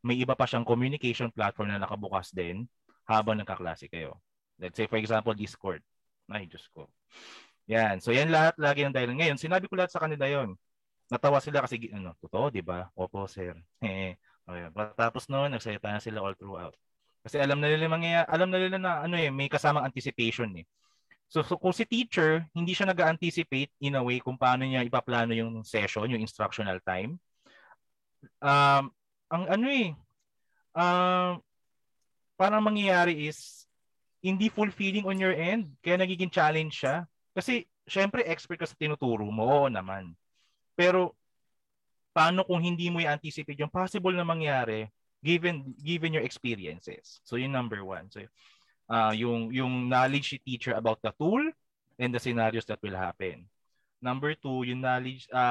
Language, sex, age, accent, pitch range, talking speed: Filipino, male, 20-39, native, 110-165 Hz, 165 wpm